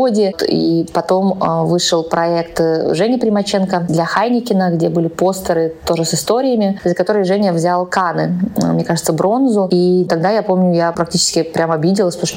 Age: 20-39